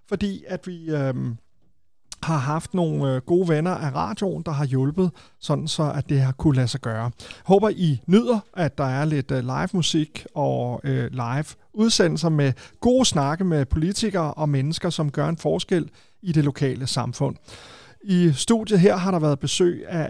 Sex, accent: male, native